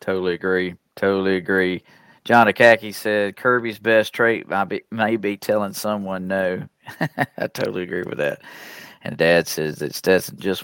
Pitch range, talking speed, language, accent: 100-125 Hz, 150 wpm, English, American